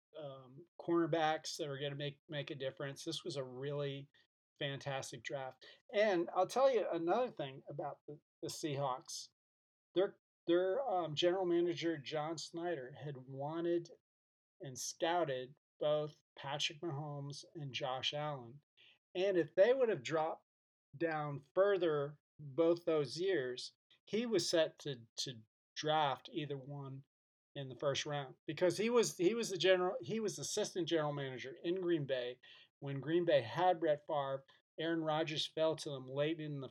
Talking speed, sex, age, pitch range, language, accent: 155 wpm, male, 40-59, 135-170 Hz, English, American